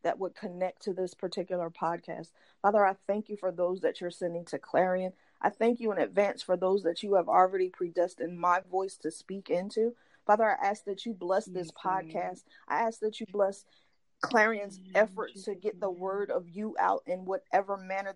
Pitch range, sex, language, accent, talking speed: 185-215 Hz, female, English, American, 200 wpm